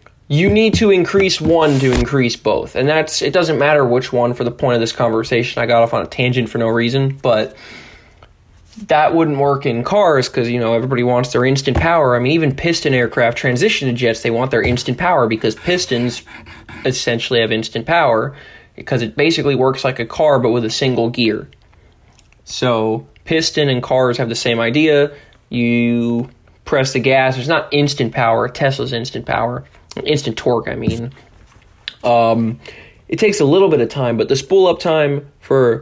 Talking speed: 190 wpm